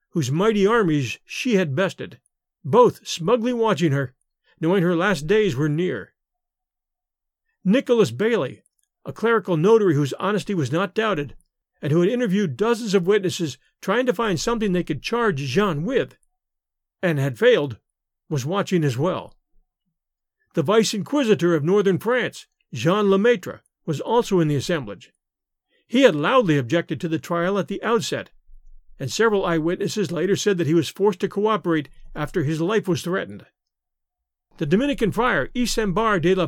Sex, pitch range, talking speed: male, 165-220 Hz, 155 wpm